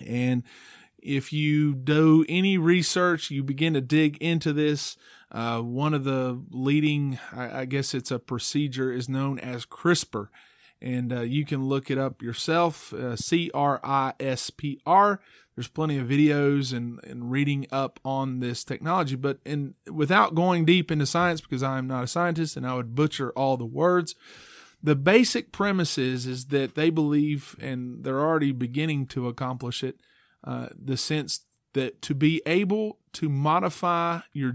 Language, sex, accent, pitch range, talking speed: English, male, American, 130-155 Hz, 165 wpm